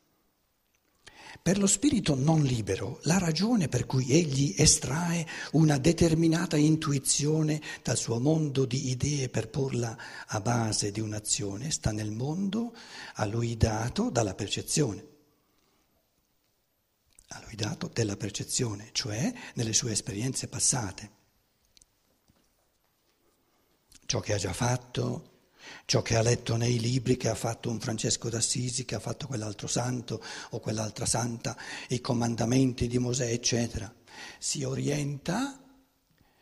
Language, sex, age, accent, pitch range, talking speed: Italian, male, 60-79, native, 105-145 Hz, 125 wpm